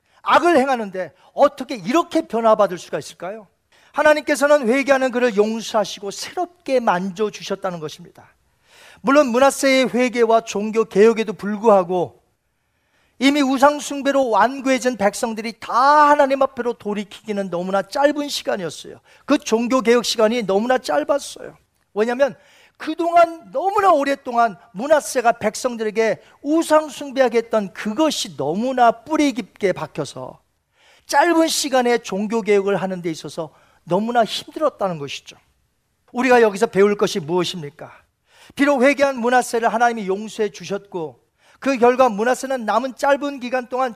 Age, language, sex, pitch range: 40-59, Korean, male, 210-275 Hz